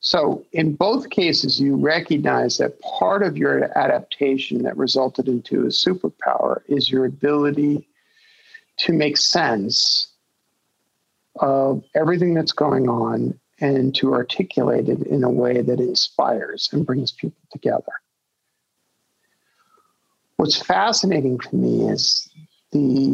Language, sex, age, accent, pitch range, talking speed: English, male, 50-69, American, 130-175 Hz, 120 wpm